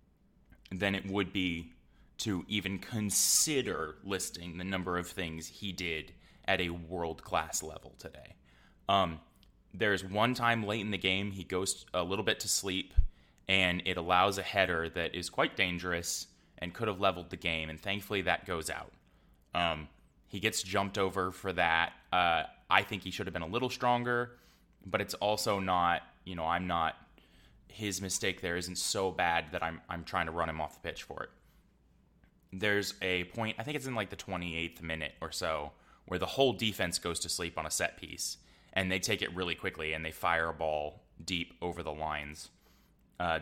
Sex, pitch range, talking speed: male, 80-100 Hz, 190 wpm